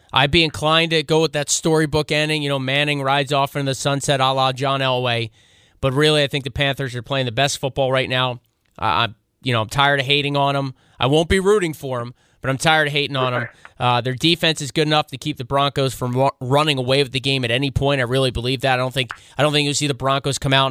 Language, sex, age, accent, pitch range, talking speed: English, male, 20-39, American, 125-145 Hz, 270 wpm